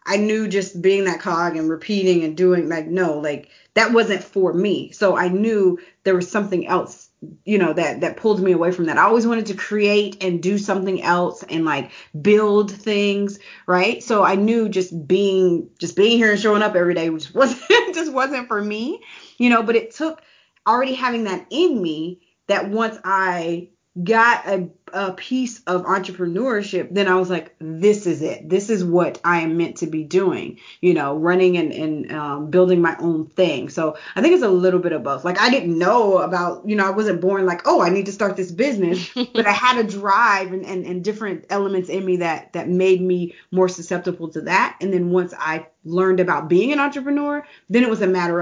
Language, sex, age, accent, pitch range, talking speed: English, female, 30-49, American, 175-210 Hz, 215 wpm